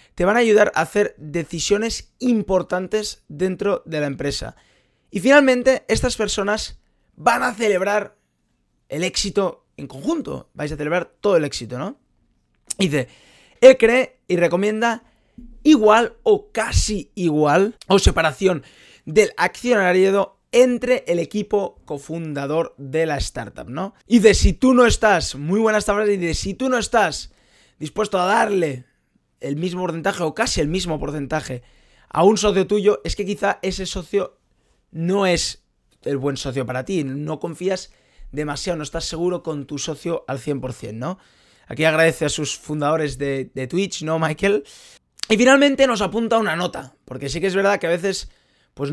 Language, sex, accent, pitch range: Spanish, male, Spanish, 155-210 Hz